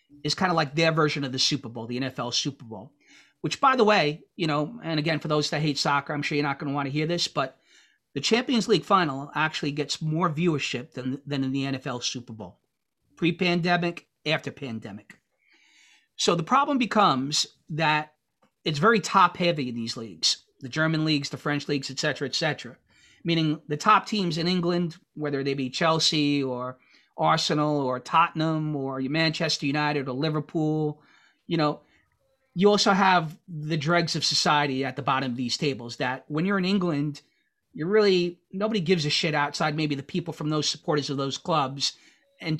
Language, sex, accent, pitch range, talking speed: English, male, American, 140-175 Hz, 185 wpm